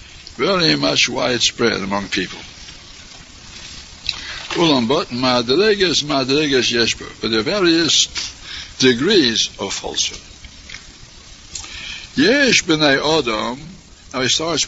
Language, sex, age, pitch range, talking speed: English, male, 60-79, 115-165 Hz, 85 wpm